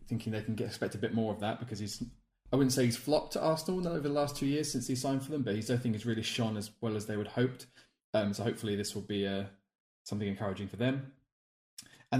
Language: English